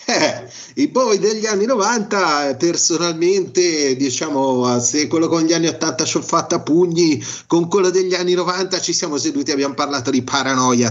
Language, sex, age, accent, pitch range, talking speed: Italian, male, 30-49, native, 125-175 Hz, 170 wpm